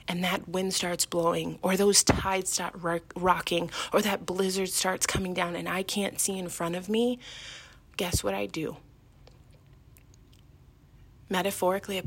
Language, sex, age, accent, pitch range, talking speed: English, female, 20-39, American, 165-210 Hz, 155 wpm